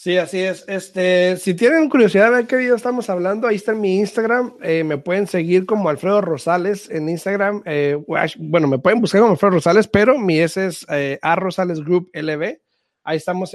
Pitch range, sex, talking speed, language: 150-200 Hz, male, 190 wpm, Spanish